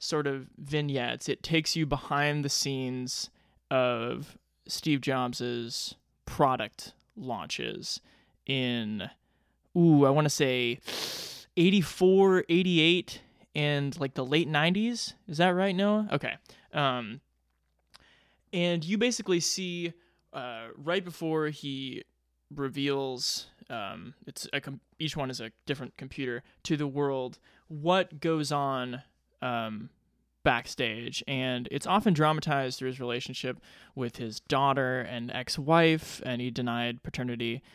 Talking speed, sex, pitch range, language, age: 120 wpm, male, 125-160 Hz, English, 20-39